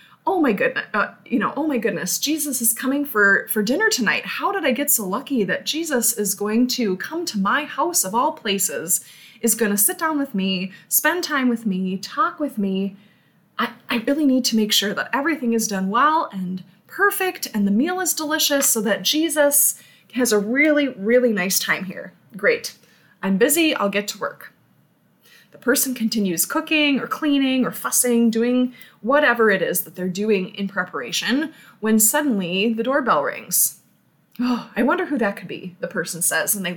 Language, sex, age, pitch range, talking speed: English, female, 20-39, 200-285 Hz, 195 wpm